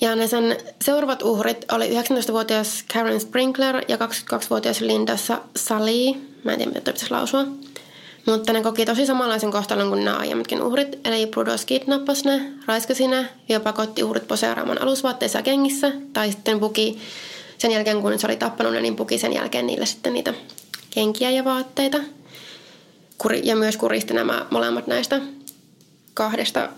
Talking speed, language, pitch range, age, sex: 150 wpm, Finnish, 180-260 Hz, 20-39, female